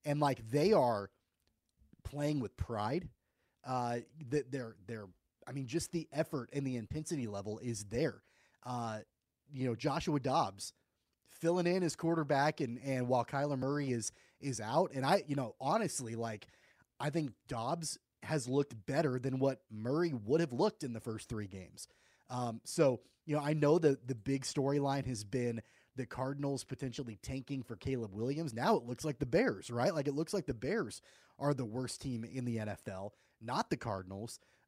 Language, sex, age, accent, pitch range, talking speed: English, male, 30-49, American, 120-150 Hz, 180 wpm